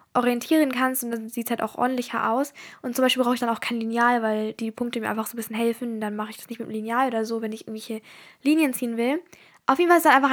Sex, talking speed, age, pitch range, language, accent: female, 290 wpm, 10-29, 230-270 Hz, German, German